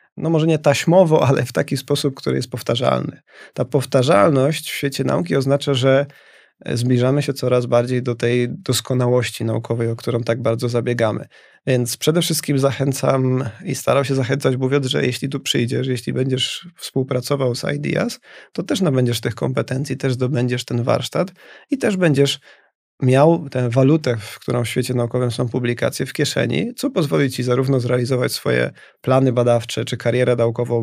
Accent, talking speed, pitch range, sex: native, 165 wpm, 120-140 Hz, male